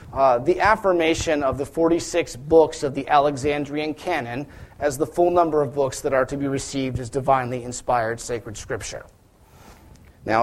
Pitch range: 135-170 Hz